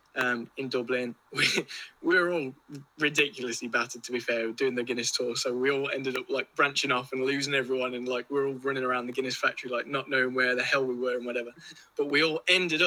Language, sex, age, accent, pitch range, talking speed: English, male, 20-39, British, 125-150 Hz, 240 wpm